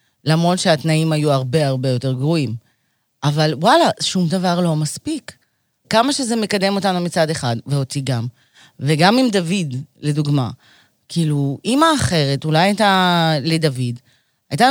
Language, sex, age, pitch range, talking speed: Hebrew, female, 30-49, 140-195 Hz, 130 wpm